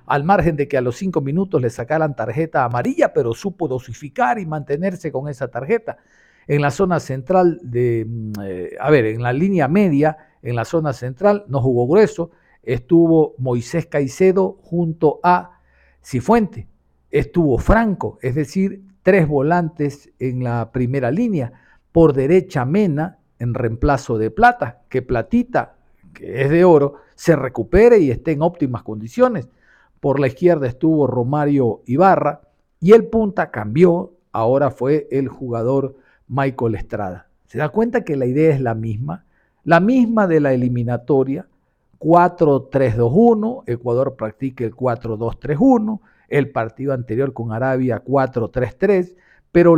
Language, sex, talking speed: Spanish, male, 140 wpm